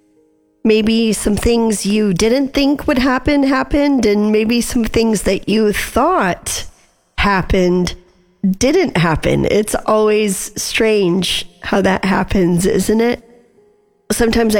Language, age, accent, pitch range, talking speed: English, 40-59, American, 185-225 Hz, 115 wpm